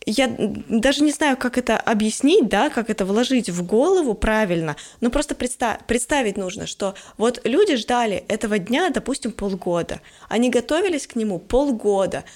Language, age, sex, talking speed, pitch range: Russian, 20-39, female, 150 wpm, 210-265 Hz